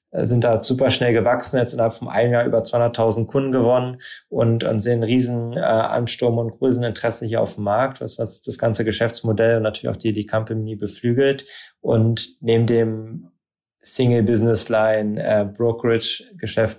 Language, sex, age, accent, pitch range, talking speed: German, male, 20-39, German, 105-115 Hz, 155 wpm